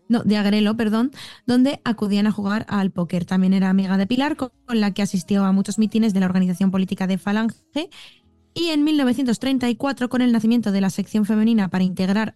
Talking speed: 200 wpm